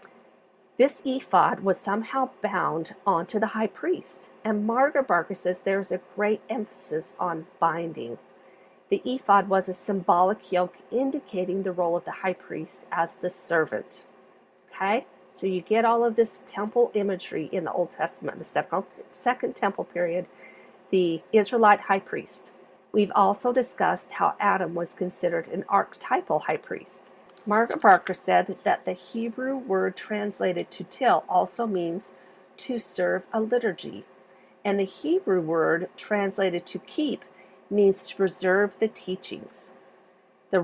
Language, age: English, 50-69